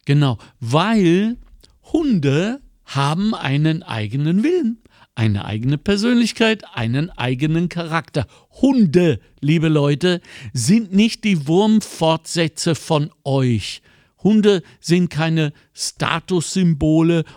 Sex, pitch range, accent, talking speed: male, 145-200 Hz, German, 90 wpm